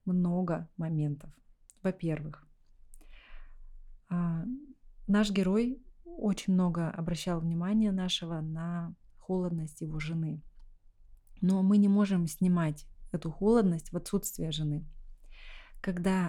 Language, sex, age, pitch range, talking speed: Russian, female, 20-39, 160-195 Hz, 90 wpm